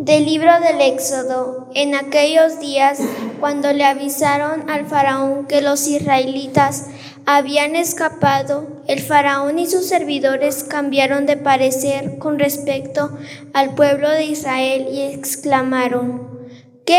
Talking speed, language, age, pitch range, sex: 120 wpm, Spanish, 20-39, 270-295 Hz, female